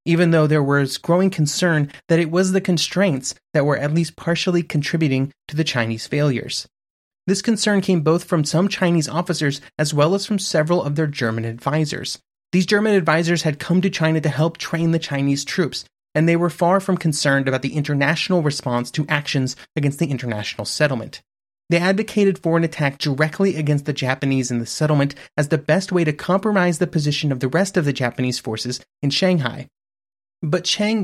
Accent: American